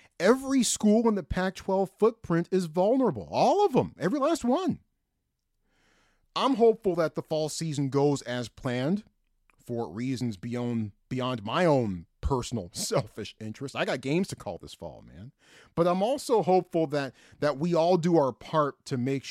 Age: 40-59